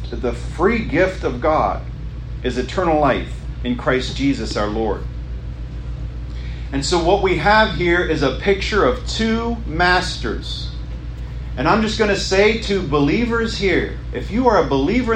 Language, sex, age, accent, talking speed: English, male, 40-59, American, 160 wpm